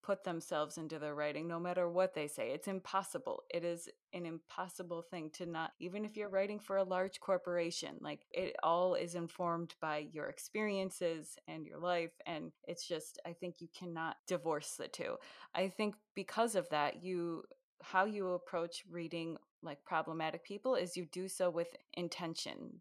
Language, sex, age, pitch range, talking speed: English, female, 20-39, 160-190 Hz, 175 wpm